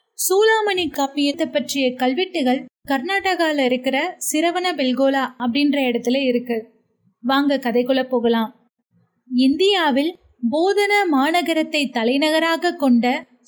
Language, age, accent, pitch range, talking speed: Tamil, 30-49, native, 265-350 Hz, 50 wpm